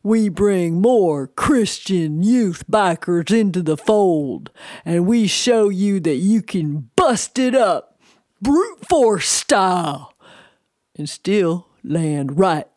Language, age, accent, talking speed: English, 50-69, American, 120 wpm